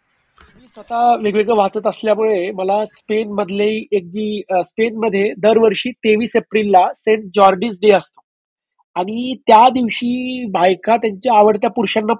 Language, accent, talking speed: Marathi, native, 130 wpm